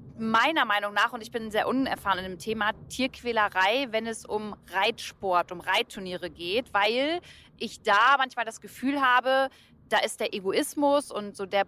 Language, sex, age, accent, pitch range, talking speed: German, female, 30-49, German, 205-250 Hz, 170 wpm